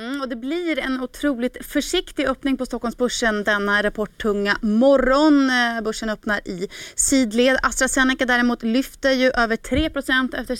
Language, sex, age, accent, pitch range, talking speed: Swedish, female, 30-49, native, 210-265 Hz, 135 wpm